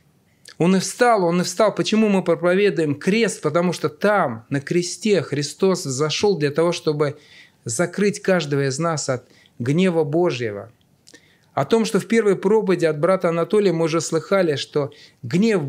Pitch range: 130-180 Hz